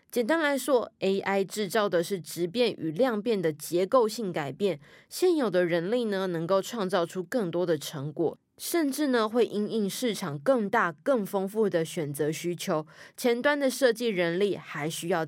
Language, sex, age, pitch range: Chinese, female, 20-39, 170-230 Hz